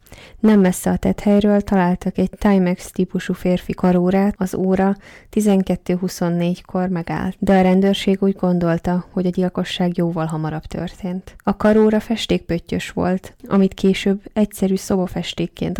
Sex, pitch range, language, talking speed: female, 180-200 Hz, Hungarian, 120 wpm